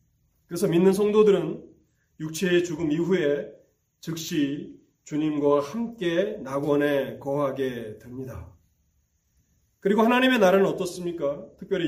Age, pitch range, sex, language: 30-49, 120-170 Hz, male, Korean